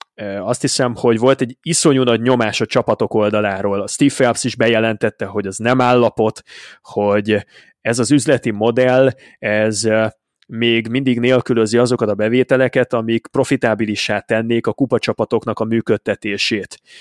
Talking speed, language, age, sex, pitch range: 140 wpm, Hungarian, 20-39, male, 110-130 Hz